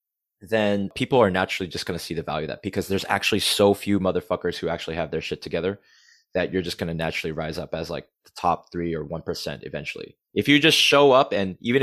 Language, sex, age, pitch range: English, male, 20-39, 95-115 Hz